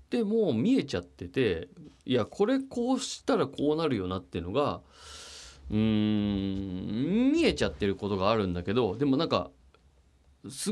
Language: Japanese